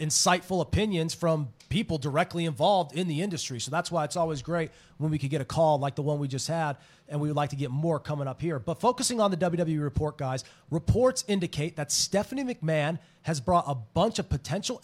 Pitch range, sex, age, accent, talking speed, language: 145-185 Hz, male, 30-49, American, 220 wpm, English